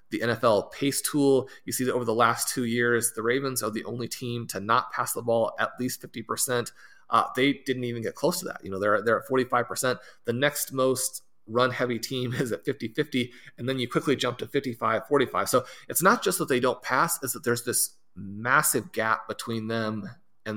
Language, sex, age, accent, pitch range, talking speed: English, male, 30-49, American, 115-135 Hz, 225 wpm